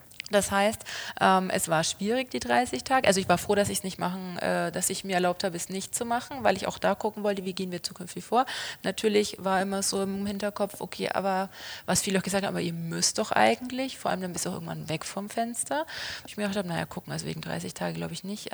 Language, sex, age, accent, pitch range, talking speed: German, female, 30-49, German, 175-205 Hz, 260 wpm